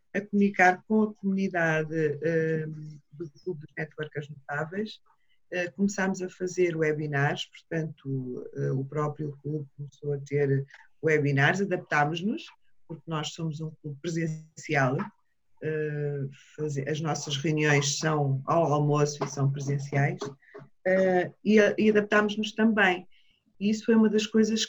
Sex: female